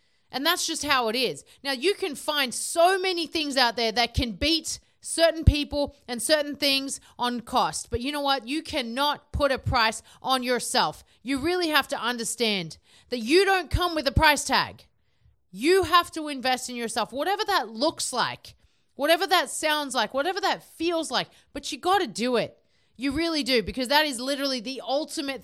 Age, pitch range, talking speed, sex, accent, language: 30-49, 245-315 Hz, 190 wpm, female, Australian, English